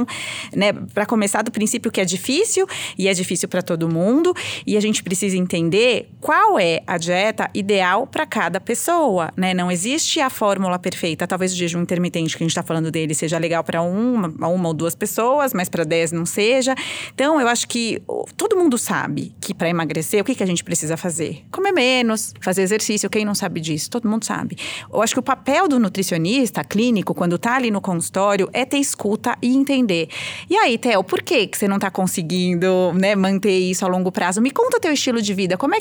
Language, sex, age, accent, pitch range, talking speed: English, female, 30-49, Brazilian, 185-265 Hz, 210 wpm